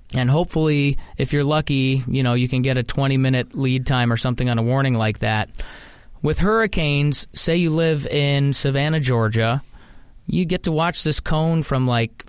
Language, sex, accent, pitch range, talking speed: English, male, American, 125-150 Hz, 180 wpm